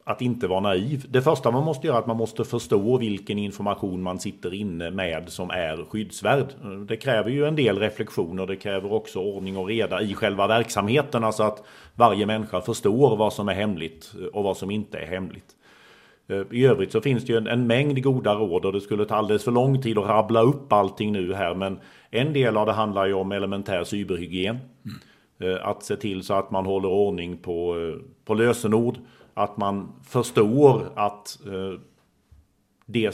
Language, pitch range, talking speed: Swedish, 95-115 Hz, 190 wpm